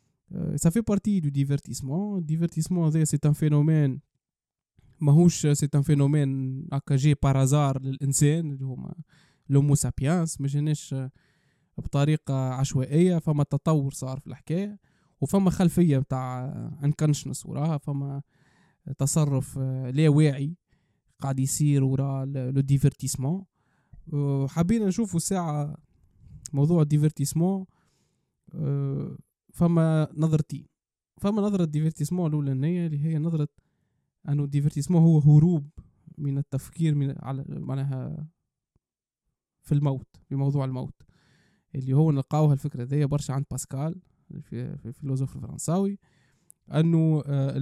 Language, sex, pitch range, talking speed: Arabic, male, 135-160 Hz, 75 wpm